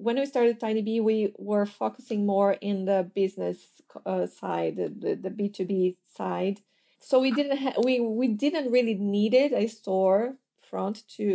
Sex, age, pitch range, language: female, 30-49, 200-230 Hz, English